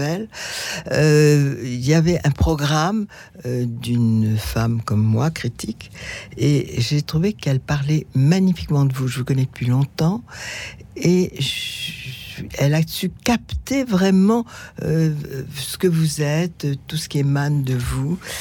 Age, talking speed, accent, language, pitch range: 60-79, 140 wpm, French, French, 120-160 Hz